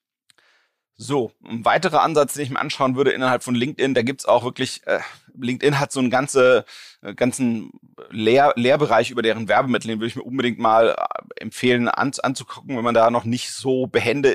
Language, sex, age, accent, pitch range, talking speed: German, male, 30-49, German, 115-130 Hz, 190 wpm